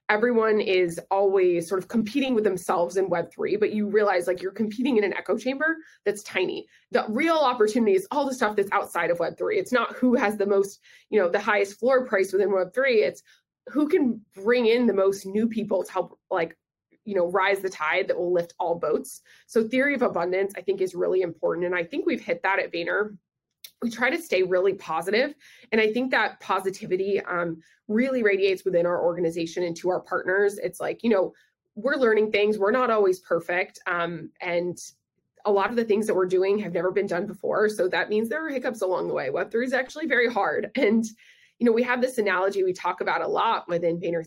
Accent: American